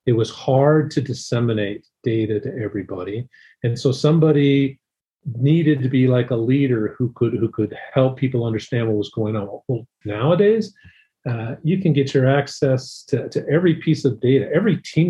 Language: English